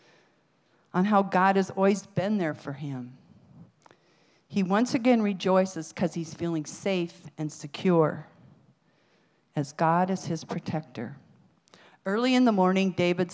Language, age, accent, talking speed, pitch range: English, 50-69, American, 130 wpm, 165-200 Hz